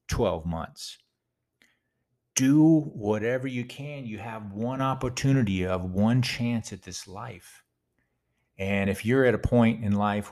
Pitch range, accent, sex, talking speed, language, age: 85-120 Hz, American, male, 140 wpm, English, 40-59